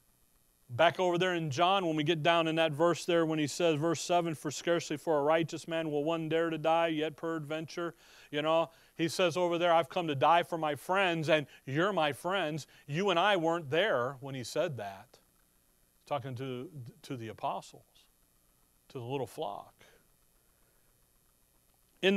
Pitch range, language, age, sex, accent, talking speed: 150-185 Hz, English, 40-59, male, American, 180 wpm